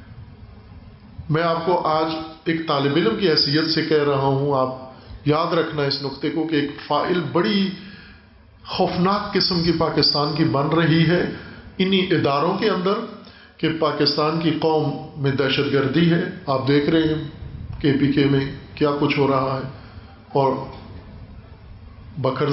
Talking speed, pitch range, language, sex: 155 wpm, 135-160 Hz, Urdu, male